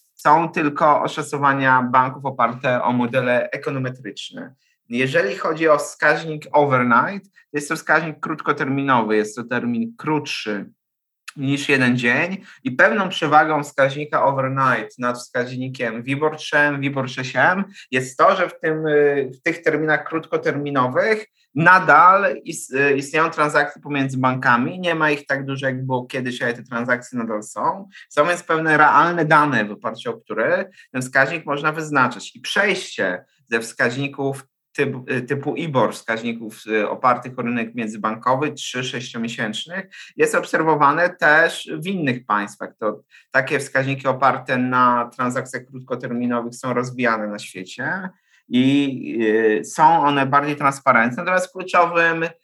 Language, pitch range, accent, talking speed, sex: Polish, 125-155 Hz, native, 130 wpm, male